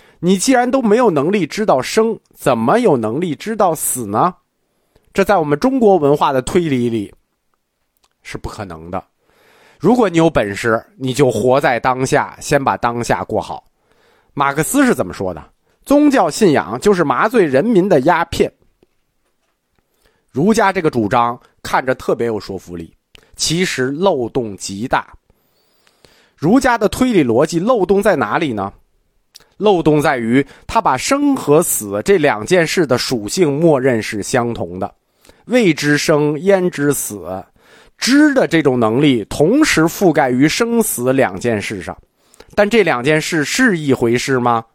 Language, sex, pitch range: Chinese, male, 120-195 Hz